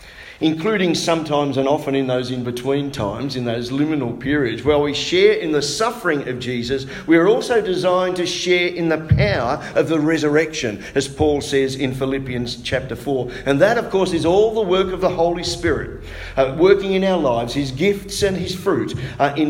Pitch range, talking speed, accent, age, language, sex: 125-165 Hz, 195 wpm, Australian, 50-69, English, male